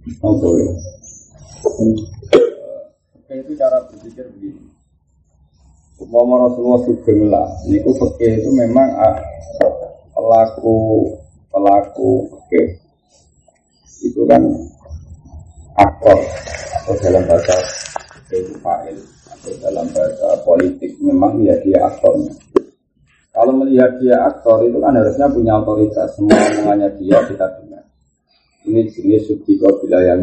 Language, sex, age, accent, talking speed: Indonesian, male, 40-59, native, 95 wpm